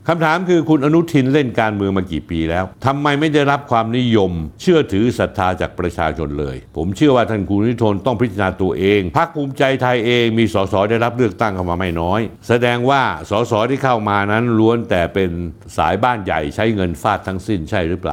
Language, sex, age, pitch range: Thai, male, 60-79, 90-120 Hz